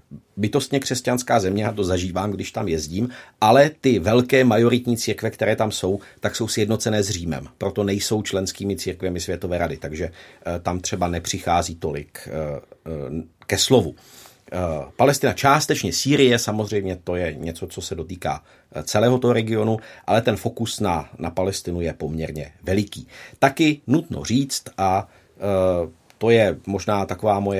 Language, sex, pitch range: Czech, male, 90-115 Hz